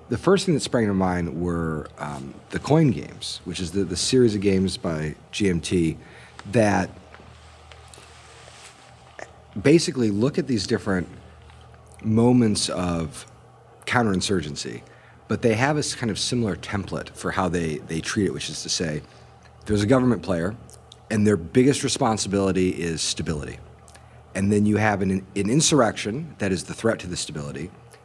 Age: 50-69